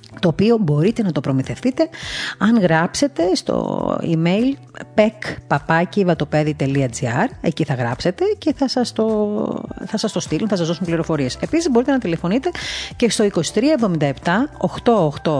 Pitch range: 145-220 Hz